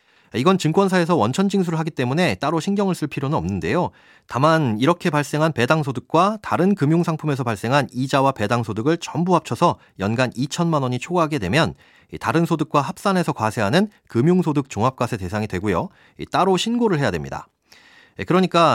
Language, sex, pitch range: Korean, male, 115-175 Hz